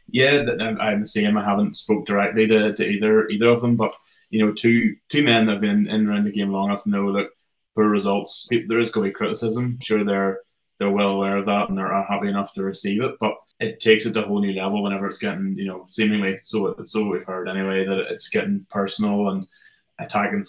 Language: English